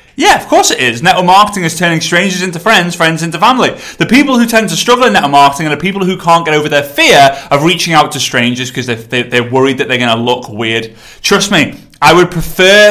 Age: 30-49